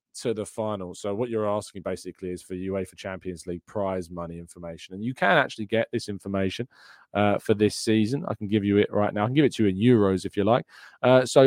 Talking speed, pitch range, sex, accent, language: 250 wpm, 105-150 Hz, male, British, English